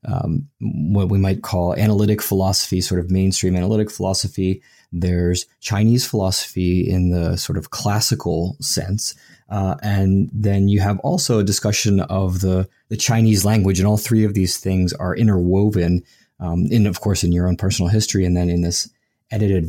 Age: 20-39